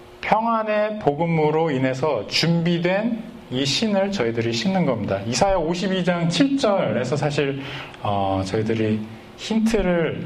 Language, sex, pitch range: Korean, male, 115-160 Hz